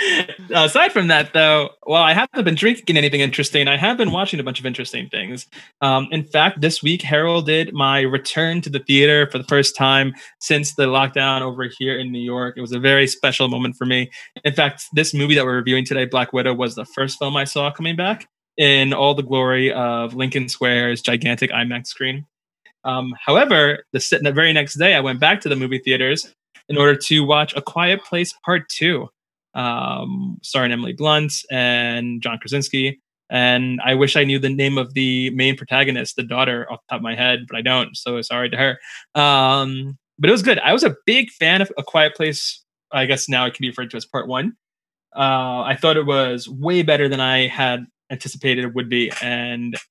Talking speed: 215 wpm